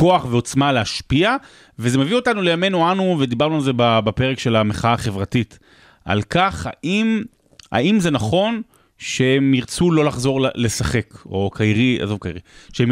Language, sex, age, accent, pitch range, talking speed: Hebrew, male, 30-49, native, 120-165 Hz, 145 wpm